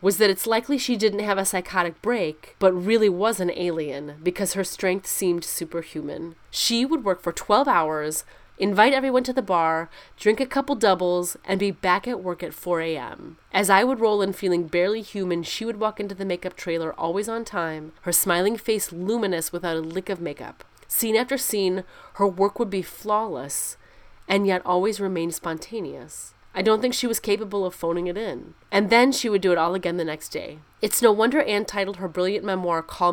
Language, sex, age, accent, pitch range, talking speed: English, female, 30-49, American, 175-215 Hz, 205 wpm